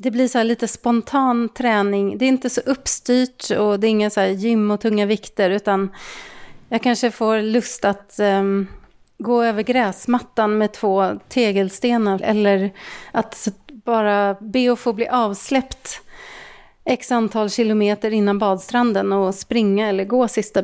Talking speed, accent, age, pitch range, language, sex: 155 wpm, native, 30-49, 205-250 Hz, Swedish, female